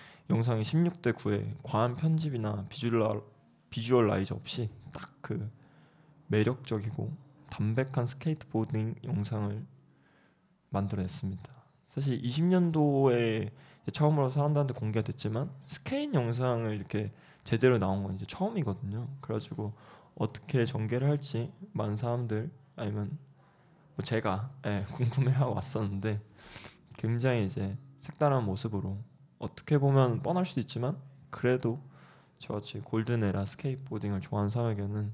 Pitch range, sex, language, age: 110-145 Hz, male, Korean, 20-39